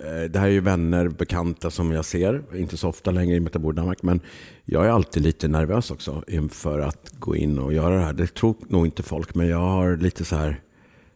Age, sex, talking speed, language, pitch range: 50-69, male, 220 wpm, Swedish, 75-90 Hz